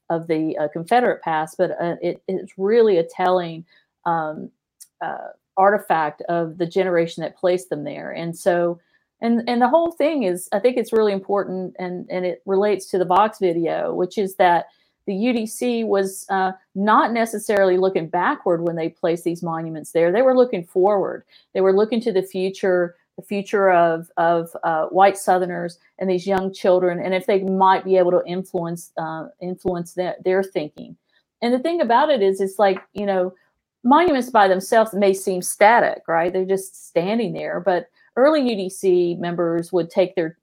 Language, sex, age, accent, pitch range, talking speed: English, female, 50-69, American, 175-200 Hz, 180 wpm